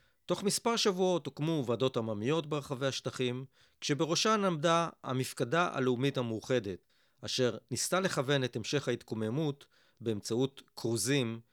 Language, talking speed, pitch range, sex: Hebrew, 110 wpm, 115-165 Hz, male